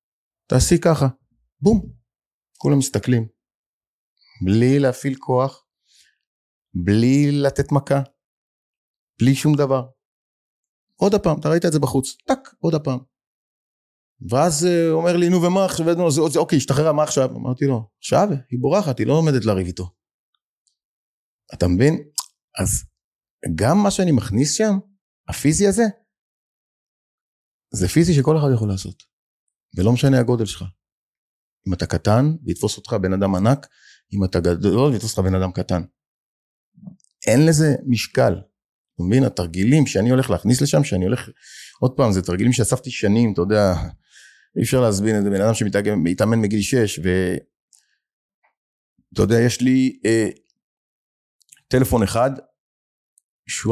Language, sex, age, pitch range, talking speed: Hebrew, male, 30-49, 105-145 Hz, 135 wpm